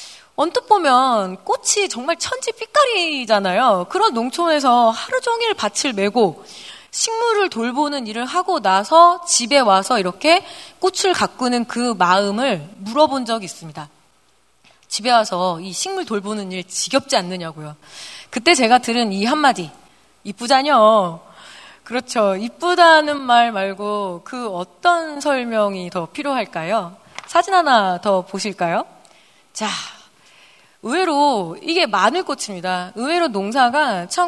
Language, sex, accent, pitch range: Korean, female, native, 195-325 Hz